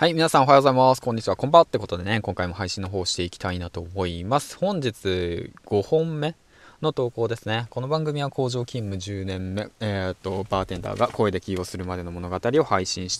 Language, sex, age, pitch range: Japanese, male, 20-39, 95-135 Hz